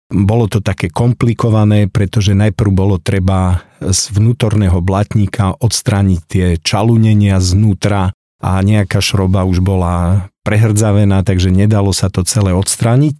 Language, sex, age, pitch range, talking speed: Slovak, male, 50-69, 95-115 Hz, 125 wpm